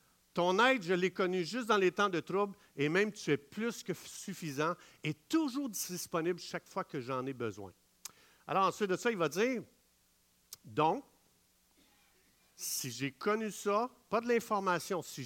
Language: French